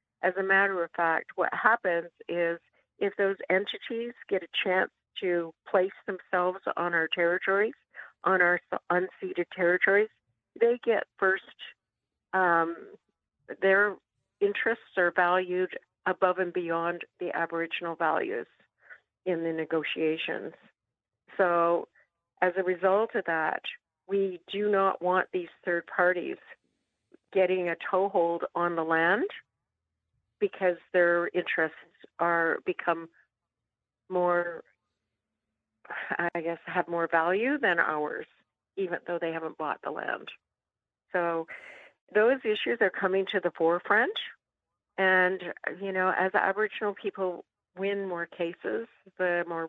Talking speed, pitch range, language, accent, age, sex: 120 wpm, 170-195 Hz, English, American, 50-69, female